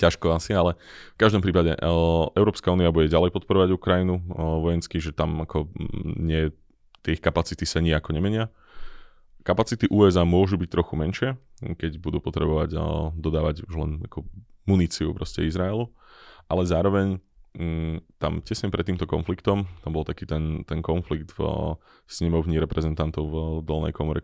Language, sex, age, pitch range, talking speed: Slovak, male, 20-39, 80-90 Hz, 155 wpm